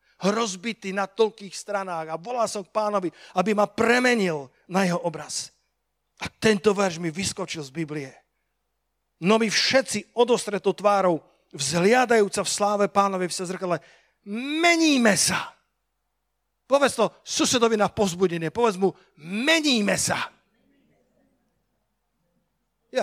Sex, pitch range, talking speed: male, 185-235 Hz, 115 wpm